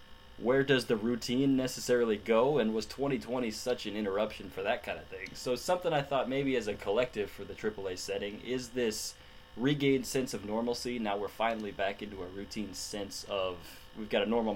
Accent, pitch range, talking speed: American, 105-130 Hz, 200 wpm